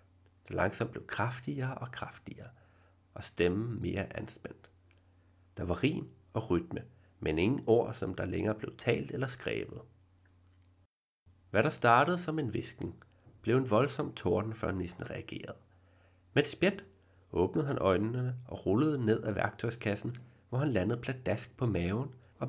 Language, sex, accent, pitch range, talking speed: Danish, male, native, 90-120 Hz, 145 wpm